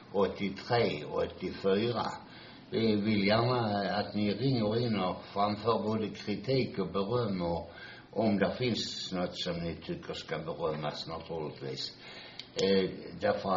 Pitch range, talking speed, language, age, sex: 90-105 Hz, 130 wpm, Swedish, 60-79, male